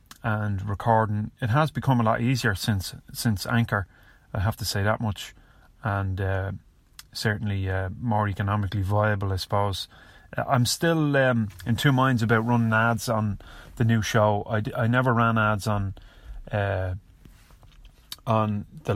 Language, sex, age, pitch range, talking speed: English, male, 30-49, 100-115 Hz, 150 wpm